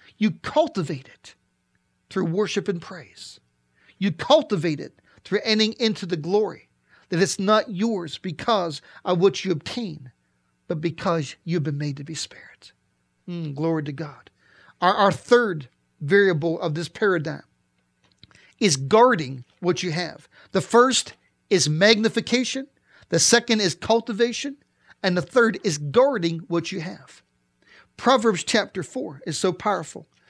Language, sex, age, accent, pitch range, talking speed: English, male, 50-69, American, 160-220 Hz, 140 wpm